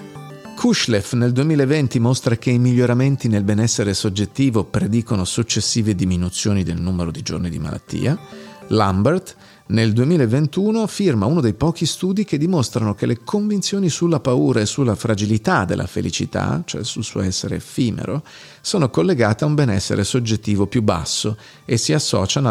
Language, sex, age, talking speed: Italian, male, 40-59, 145 wpm